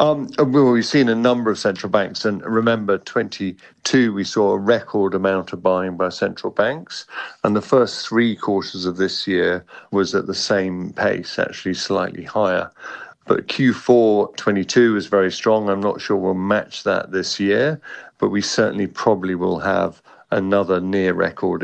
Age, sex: 50-69, male